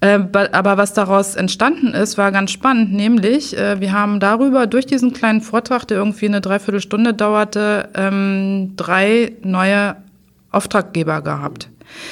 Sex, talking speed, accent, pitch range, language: female, 130 wpm, German, 185-230 Hz, German